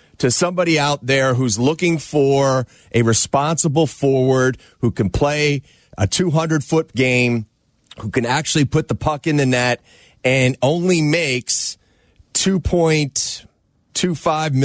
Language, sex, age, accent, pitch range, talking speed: English, male, 30-49, American, 130-160 Hz, 120 wpm